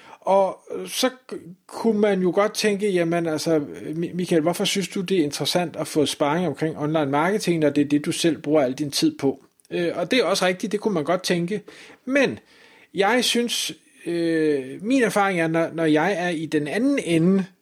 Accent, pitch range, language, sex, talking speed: native, 155-200 Hz, Danish, male, 190 wpm